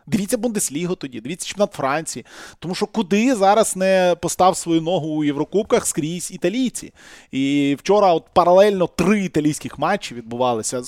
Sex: male